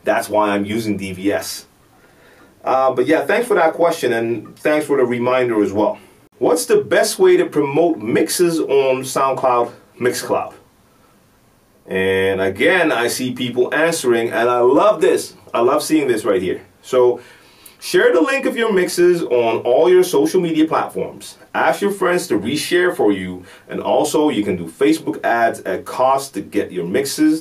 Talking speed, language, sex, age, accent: 170 wpm, English, male, 30-49, American